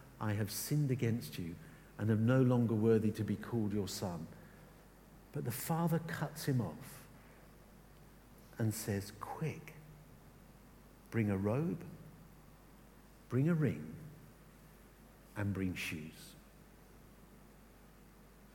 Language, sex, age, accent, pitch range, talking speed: English, male, 50-69, British, 110-160 Hz, 105 wpm